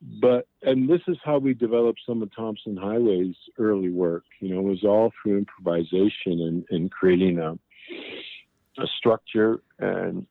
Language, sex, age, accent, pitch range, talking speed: English, male, 50-69, American, 95-115 Hz, 155 wpm